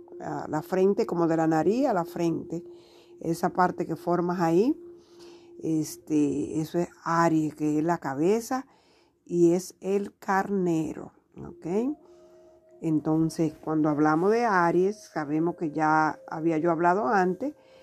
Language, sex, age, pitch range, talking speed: Spanish, female, 50-69, 160-205 Hz, 130 wpm